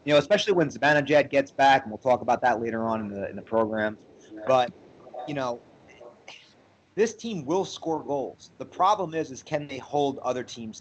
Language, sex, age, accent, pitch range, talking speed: English, male, 30-49, American, 105-135 Hz, 200 wpm